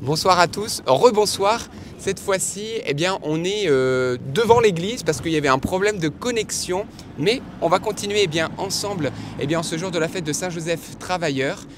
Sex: male